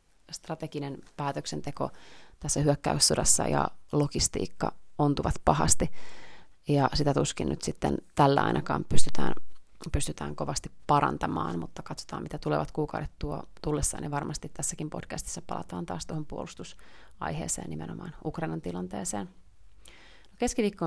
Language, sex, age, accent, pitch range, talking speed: Finnish, female, 30-49, native, 95-160 Hz, 110 wpm